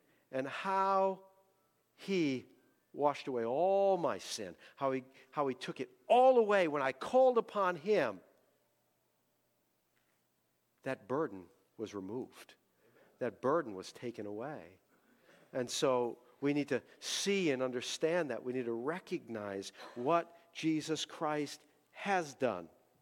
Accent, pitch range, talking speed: American, 130-175 Hz, 125 wpm